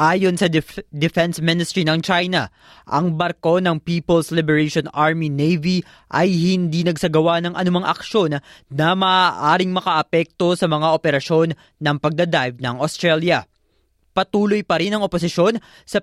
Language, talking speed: Filipino, 130 wpm